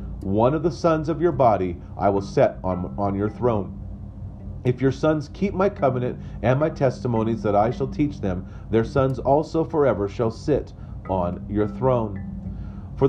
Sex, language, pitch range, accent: male, English, 100-145 Hz, American